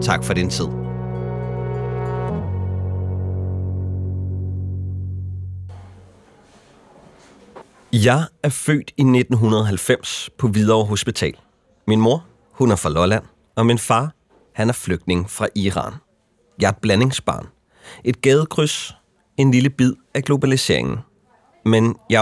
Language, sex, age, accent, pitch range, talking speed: Danish, male, 30-49, native, 95-135 Hz, 105 wpm